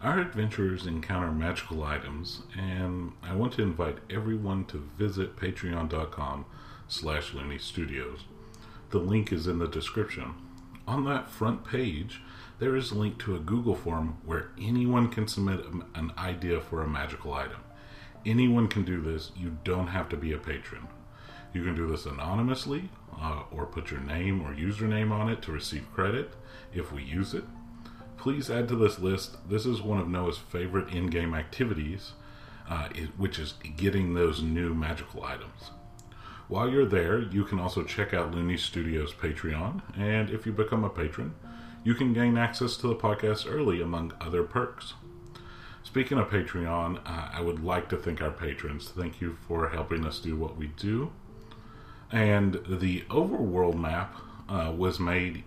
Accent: American